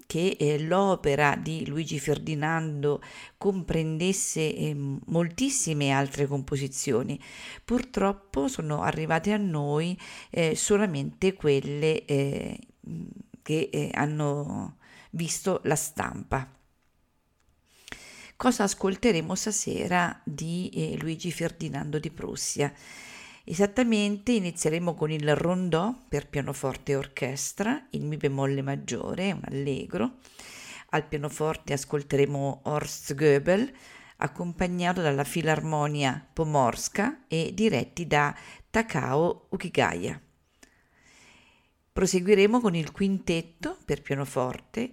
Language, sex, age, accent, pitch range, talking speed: Italian, female, 50-69, native, 145-195 Hz, 85 wpm